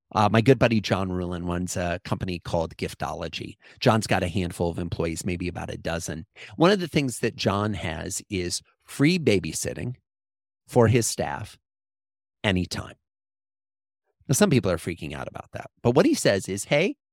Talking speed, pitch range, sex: 170 wpm, 100-155 Hz, male